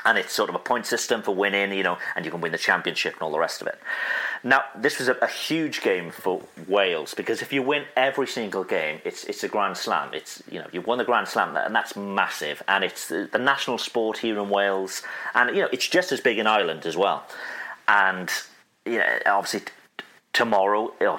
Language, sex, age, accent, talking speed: English, male, 40-59, British, 235 wpm